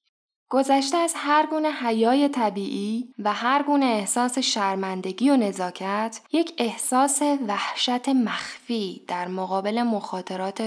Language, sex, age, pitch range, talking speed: Persian, female, 10-29, 195-260 Hz, 110 wpm